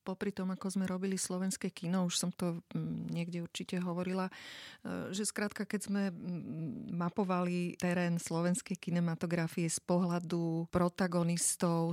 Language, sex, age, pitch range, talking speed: Slovak, female, 30-49, 170-190 Hz, 120 wpm